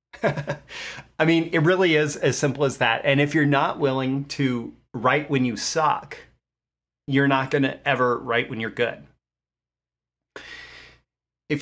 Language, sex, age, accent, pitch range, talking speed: English, male, 30-49, American, 120-155 Hz, 150 wpm